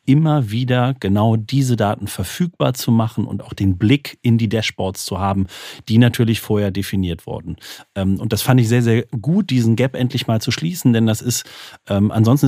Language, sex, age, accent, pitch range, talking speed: German, male, 40-59, German, 105-135 Hz, 190 wpm